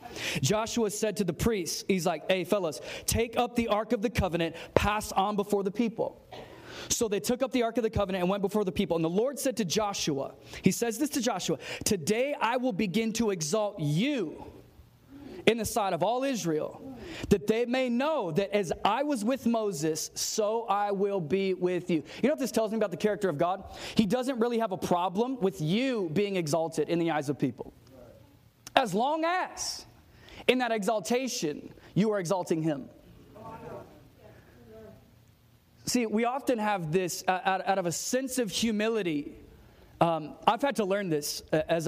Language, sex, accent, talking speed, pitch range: English, male, American, 185 wpm, 170-230 Hz